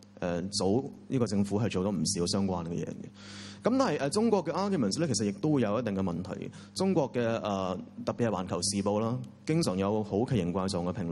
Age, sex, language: 30-49, male, Chinese